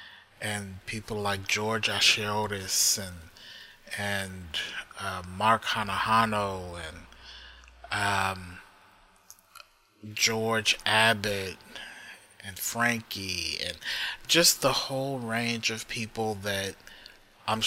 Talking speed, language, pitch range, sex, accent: 85 wpm, English, 95-115 Hz, male, American